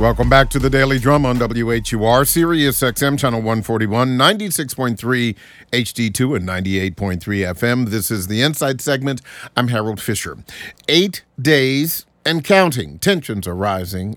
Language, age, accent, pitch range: English, 50-69, American, 105-140 Hz